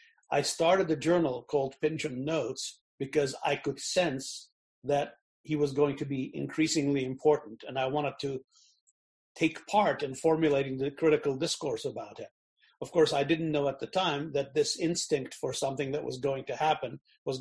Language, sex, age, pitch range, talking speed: English, male, 50-69, 135-160 Hz, 175 wpm